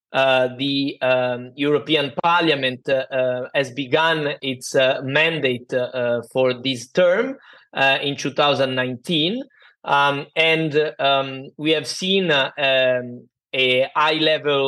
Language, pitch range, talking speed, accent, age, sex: English, 140-180 Hz, 125 wpm, Italian, 30-49, male